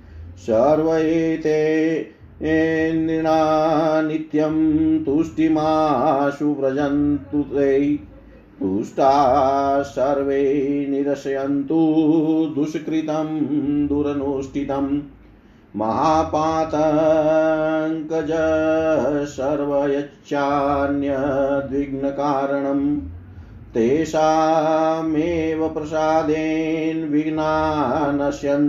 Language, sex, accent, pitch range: Hindi, male, native, 140-160 Hz